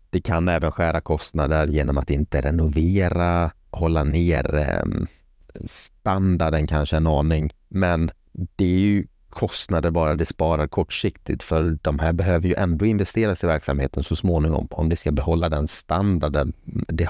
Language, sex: Swedish, male